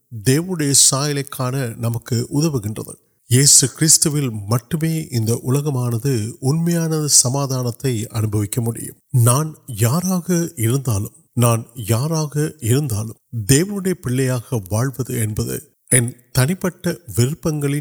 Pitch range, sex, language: 115-150 Hz, male, Urdu